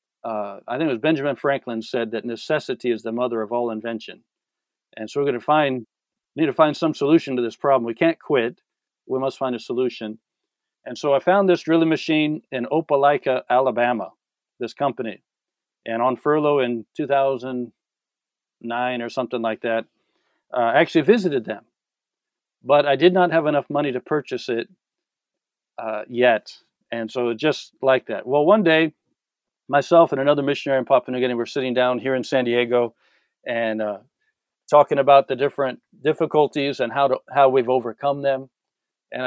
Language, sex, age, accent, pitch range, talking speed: English, male, 50-69, American, 125-150 Hz, 175 wpm